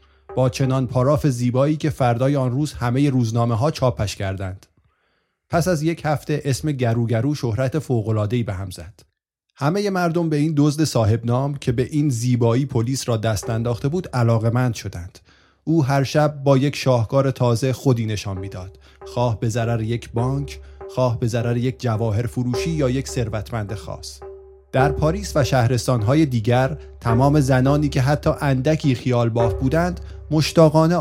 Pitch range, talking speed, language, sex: 115-140 Hz, 165 wpm, Persian, male